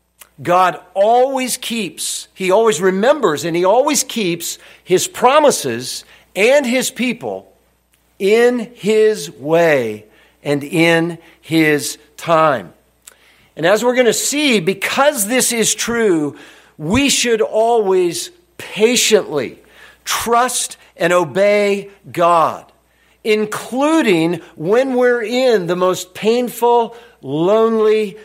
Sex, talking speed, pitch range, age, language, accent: male, 100 wpm, 165-235 Hz, 50-69, English, American